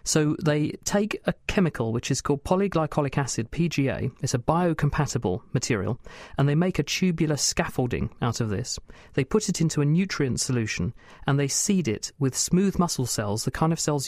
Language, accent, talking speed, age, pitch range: English, British, 185 wpm, 40-59, 130-160 Hz